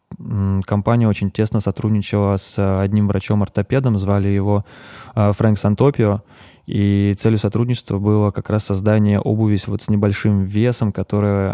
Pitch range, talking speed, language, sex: 100-110 Hz, 125 wpm, Russian, male